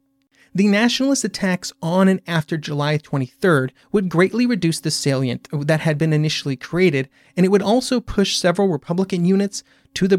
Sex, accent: male, American